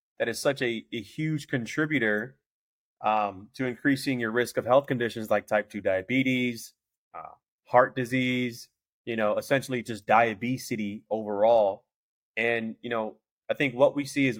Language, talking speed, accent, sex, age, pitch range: English, 155 wpm, American, male, 30-49, 105-135 Hz